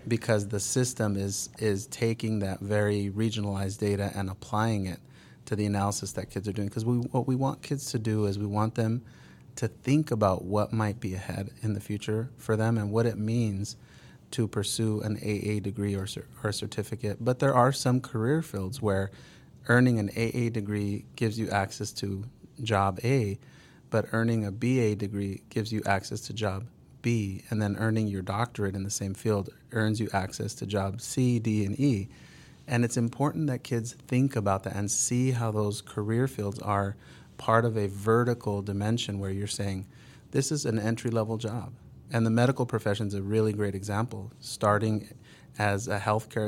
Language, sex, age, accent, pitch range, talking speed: English, male, 30-49, American, 100-120 Hz, 185 wpm